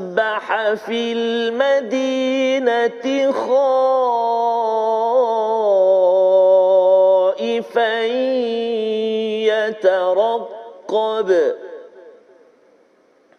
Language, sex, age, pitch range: Malayalam, male, 40-59, 230-275 Hz